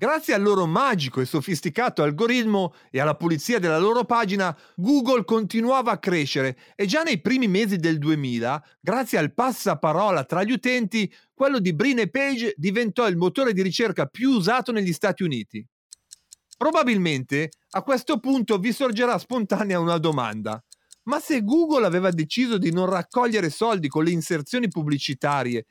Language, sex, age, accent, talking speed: Italian, male, 40-59, native, 155 wpm